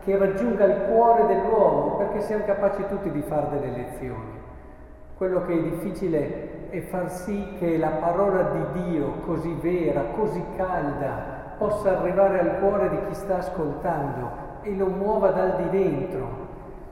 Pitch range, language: 135-185 Hz, Italian